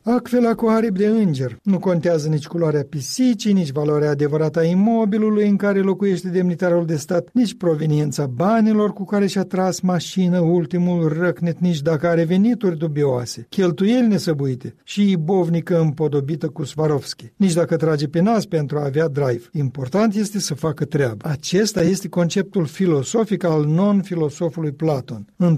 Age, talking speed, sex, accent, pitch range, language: 60-79, 150 wpm, male, native, 155-190 Hz, Romanian